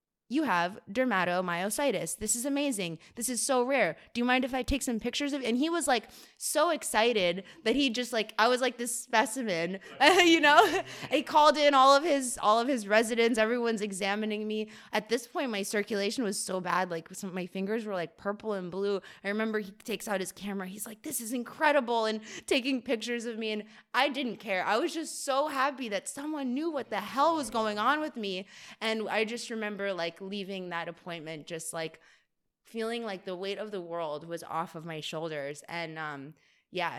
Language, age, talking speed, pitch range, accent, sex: English, 20-39, 210 wpm, 185-240 Hz, American, female